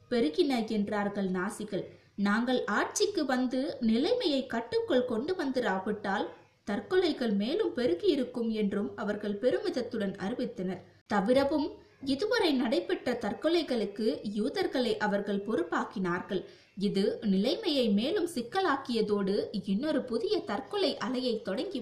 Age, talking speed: 20-39, 85 wpm